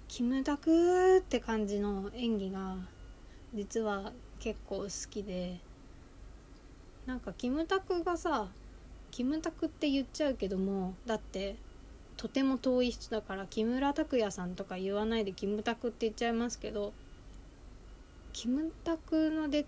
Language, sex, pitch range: Japanese, female, 195-245 Hz